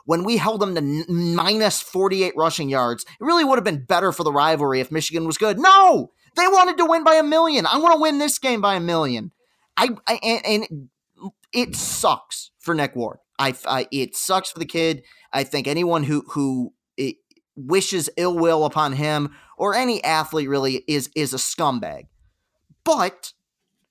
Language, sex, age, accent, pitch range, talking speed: English, male, 30-49, American, 145-215 Hz, 185 wpm